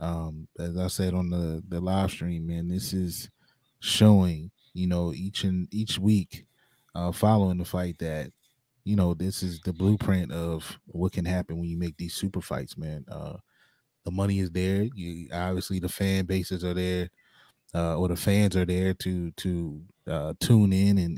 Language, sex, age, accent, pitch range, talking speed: English, male, 20-39, American, 90-100 Hz, 185 wpm